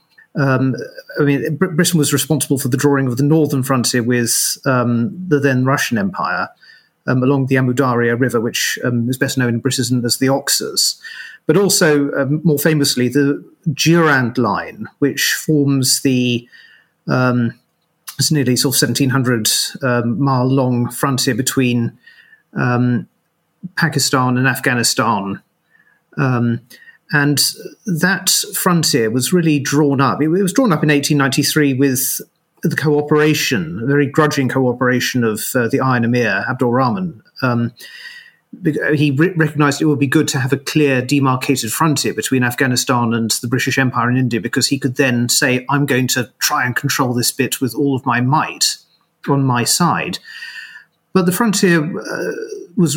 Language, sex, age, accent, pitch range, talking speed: English, male, 40-59, British, 125-160 Hz, 155 wpm